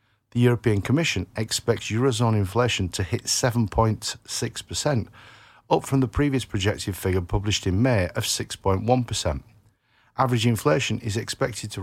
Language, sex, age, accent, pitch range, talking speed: English, male, 50-69, British, 100-125 Hz, 125 wpm